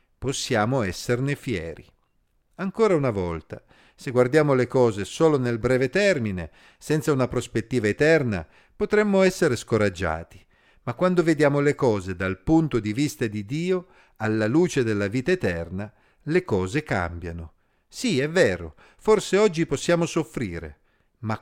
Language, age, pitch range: Italian, 50-69, 110-165 Hz